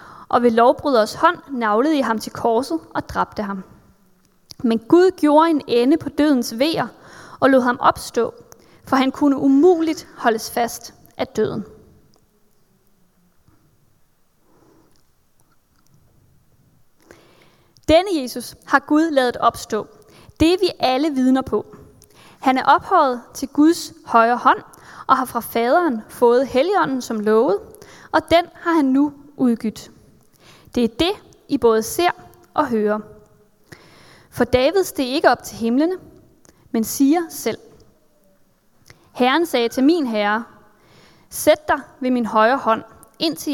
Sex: female